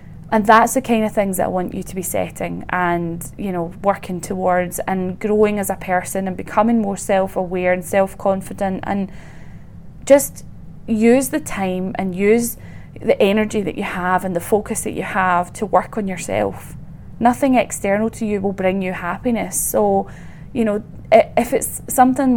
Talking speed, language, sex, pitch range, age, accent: 175 wpm, English, female, 180-215 Hz, 20-39, British